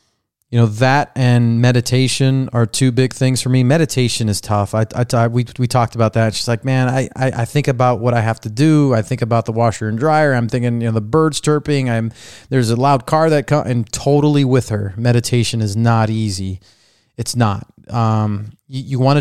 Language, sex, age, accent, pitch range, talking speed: English, male, 30-49, American, 110-130 Hz, 220 wpm